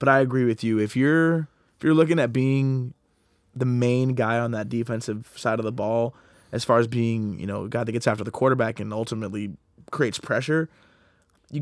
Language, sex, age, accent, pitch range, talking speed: English, male, 20-39, American, 110-135 Hz, 205 wpm